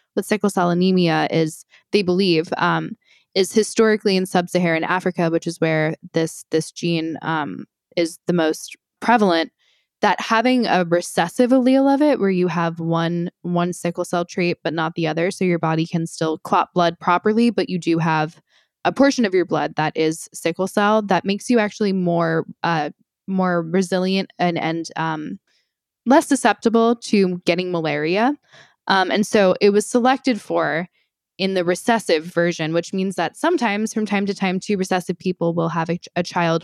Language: English